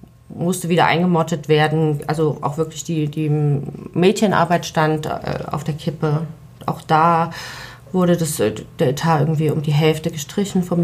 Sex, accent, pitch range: female, German, 145-165 Hz